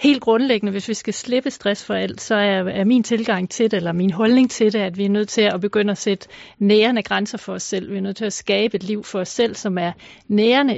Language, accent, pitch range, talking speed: Danish, native, 195-225 Hz, 265 wpm